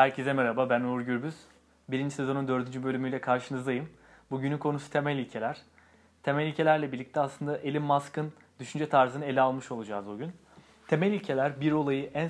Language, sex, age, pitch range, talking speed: Turkish, male, 30-49, 130-155 Hz, 155 wpm